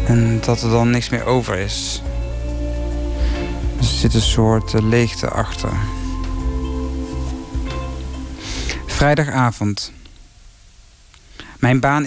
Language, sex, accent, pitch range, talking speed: Dutch, male, Dutch, 115-155 Hz, 85 wpm